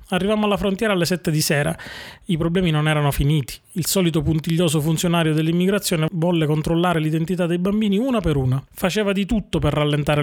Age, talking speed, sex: 30-49, 175 wpm, male